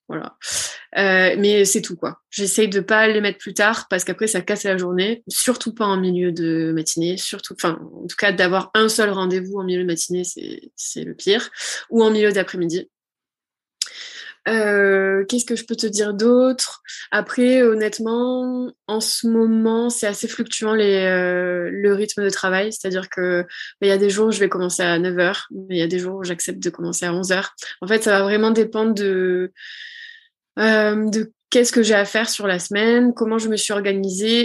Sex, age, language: female, 20-39, French